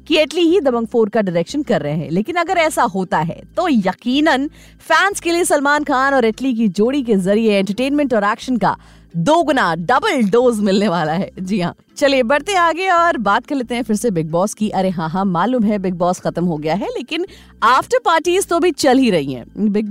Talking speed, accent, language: 220 wpm, native, Hindi